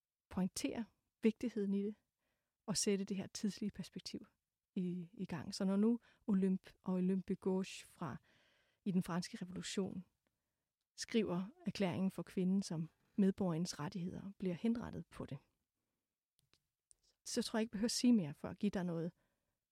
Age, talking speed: 30-49, 150 wpm